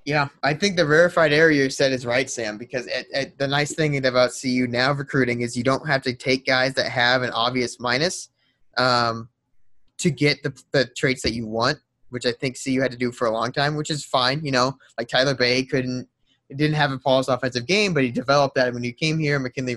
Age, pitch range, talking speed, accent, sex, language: 20-39, 120-145 Hz, 235 wpm, American, male, English